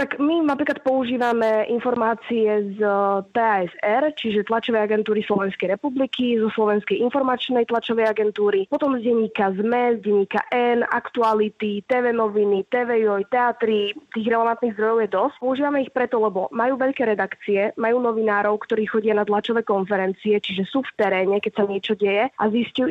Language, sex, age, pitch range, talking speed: Slovak, female, 20-39, 210-240 Hz, 150 wpm